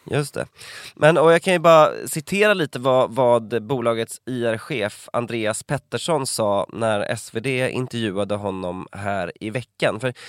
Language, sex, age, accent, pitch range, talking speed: Swedish, male, 20-39, native, 105-135 Hz, 145 wpm